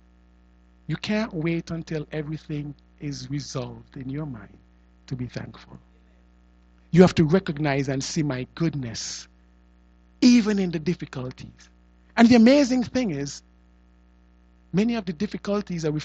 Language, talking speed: English, 135 wpm